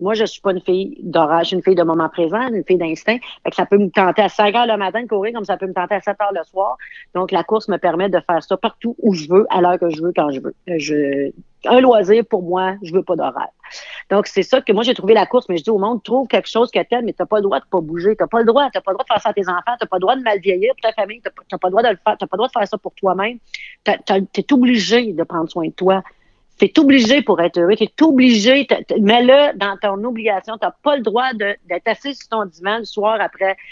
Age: 40-59